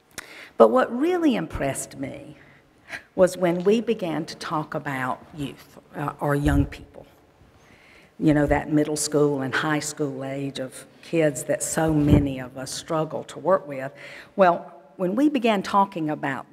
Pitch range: 140-170 Hz